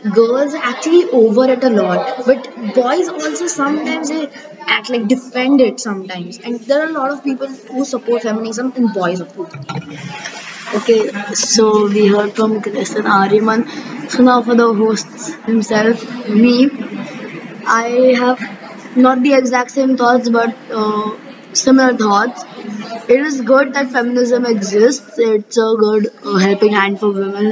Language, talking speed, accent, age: English, 150 wpm, Indian, 20-39